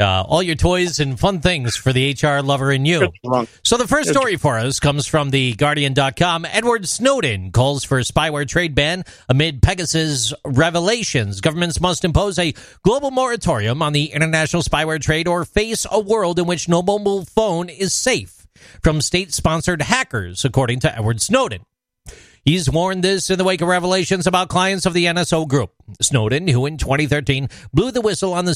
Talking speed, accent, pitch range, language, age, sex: 180 wpm, American, 140-190 Hz, English, 40-59, male